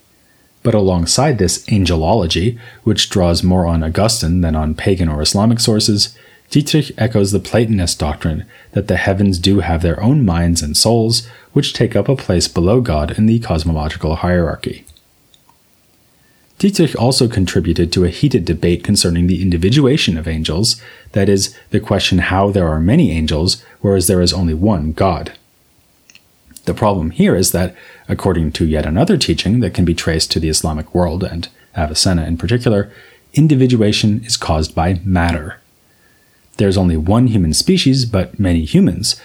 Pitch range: 85-115 Hz